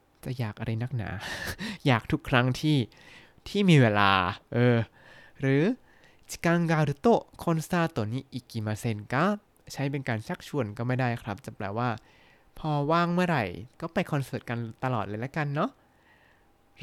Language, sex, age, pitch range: Thai, male, 20-39, 110-145 Hz